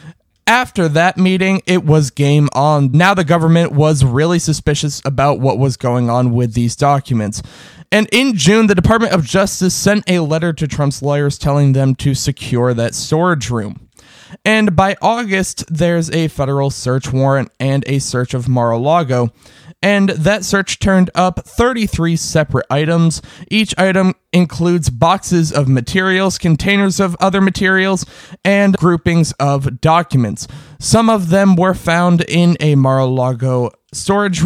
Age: 20-39